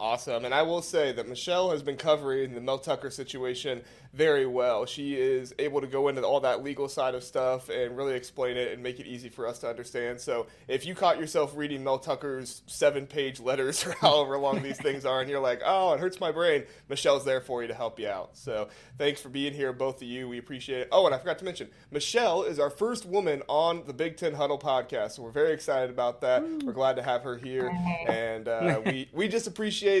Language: English